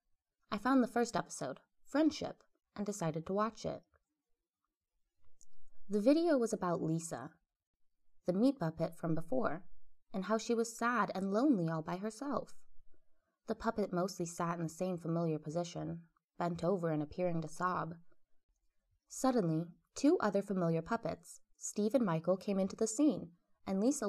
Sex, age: female, 20-39